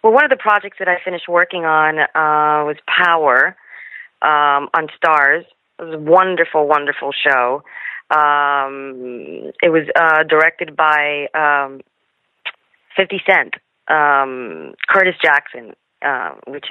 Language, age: English, 40-59